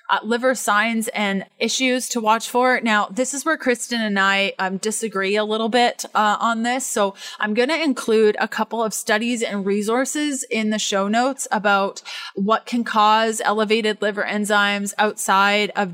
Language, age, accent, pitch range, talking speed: English, 20-39, American, 205-240 Hz, 175 wpm